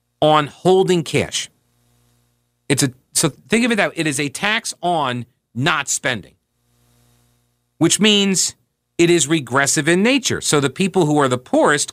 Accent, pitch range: American, 125-180 Hz